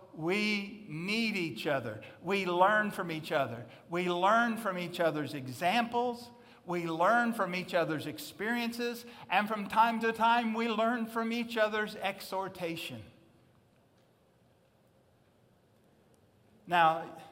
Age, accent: 50-69, American